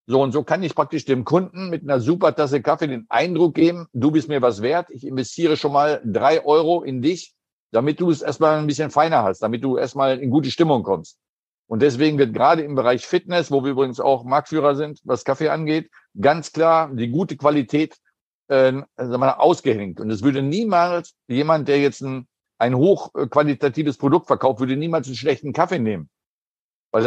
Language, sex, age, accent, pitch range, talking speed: German, male, 60-79, German, 130-155 Hz, 195 wpm